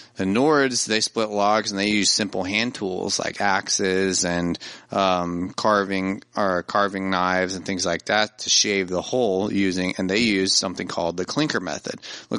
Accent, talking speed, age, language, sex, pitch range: American, 180 wpm, 30-49, English, male, 90-105 Hz